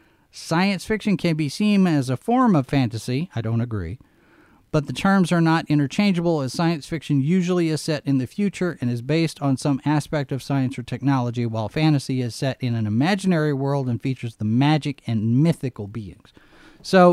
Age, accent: 40-59, American